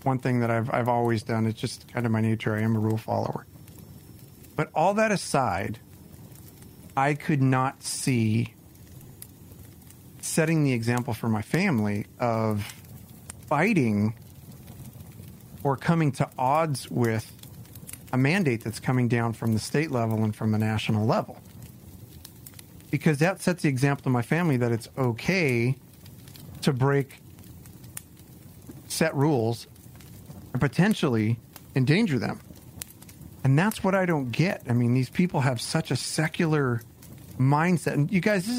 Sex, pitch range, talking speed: male, 115-150 Hz, 140 wpm